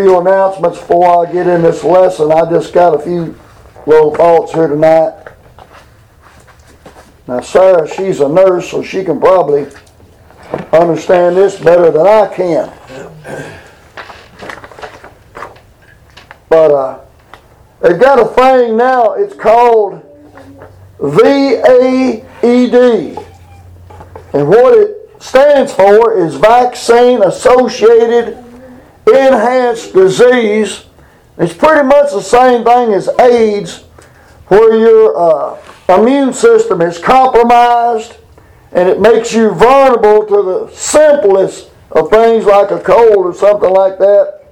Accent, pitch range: American, 175-245 Hz